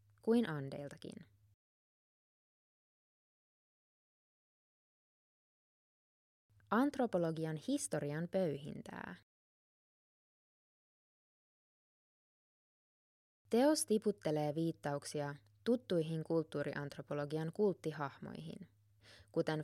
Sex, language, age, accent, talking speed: female, Finnish, 20-39, native, 35 wpm